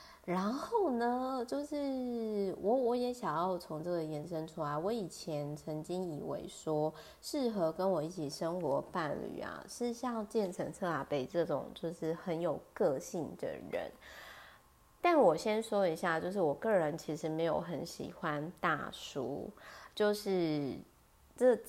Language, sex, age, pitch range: Chinese, female, 20-39, 160-220 Hz